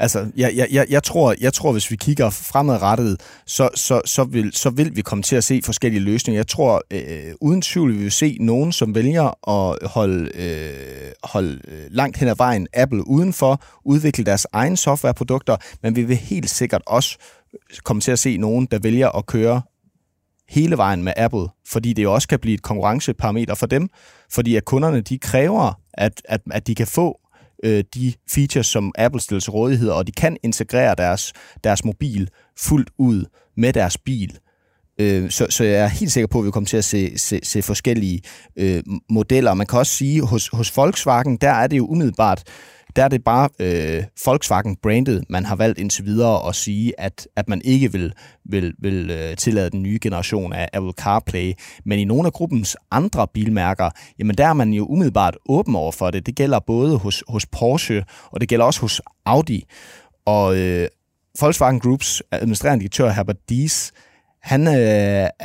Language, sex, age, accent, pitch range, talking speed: Danish, male, 30-49, native, 100-130 Hz, 185 wpm